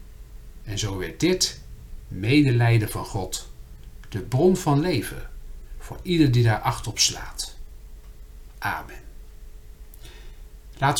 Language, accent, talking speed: Dutch, Dutch, 110 wpm